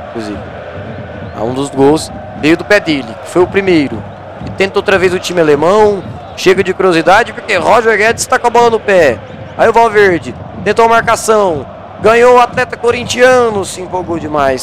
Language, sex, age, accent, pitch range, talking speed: Portuguese, male, 20-39, Brazilian, 155-225 Hz, 175 wpm